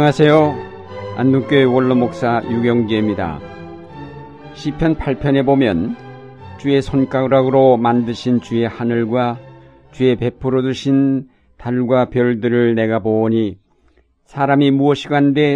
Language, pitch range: Korean, 115-135 Hz